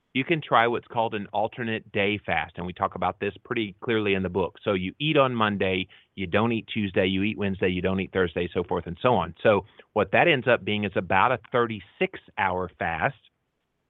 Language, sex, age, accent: English, male, 30-49, American